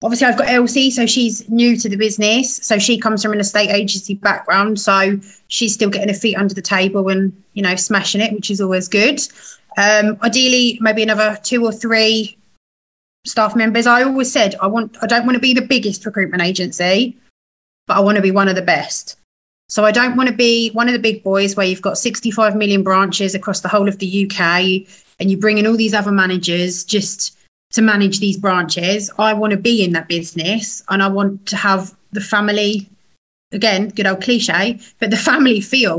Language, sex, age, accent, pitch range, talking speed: English, female, 30-49, British, 195-225 Hz, 210 wpm